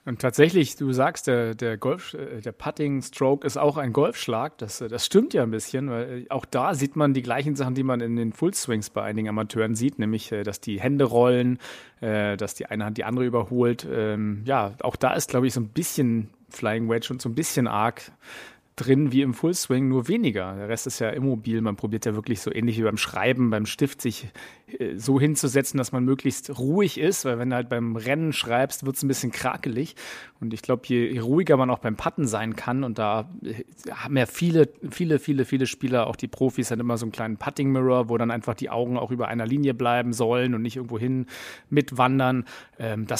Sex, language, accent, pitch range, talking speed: male, German, German, 115-140 Hz, 215 wpm